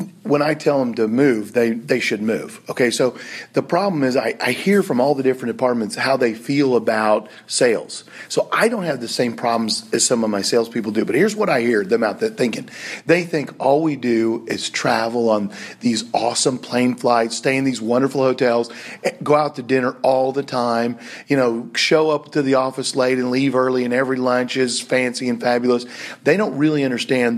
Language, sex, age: English, male, 40-59